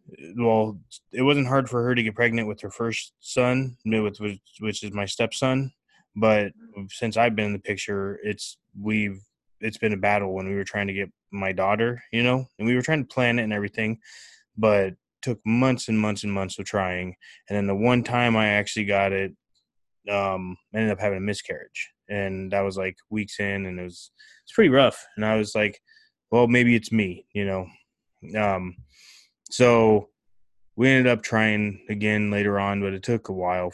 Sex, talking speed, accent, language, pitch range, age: male, 200 wpm, American, English, 95-110 Hz, 20-39